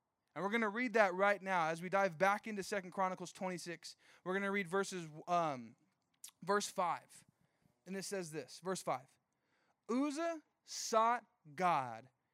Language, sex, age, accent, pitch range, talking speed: English, male, 20-39, American, 180-220 Hz, 160 wpm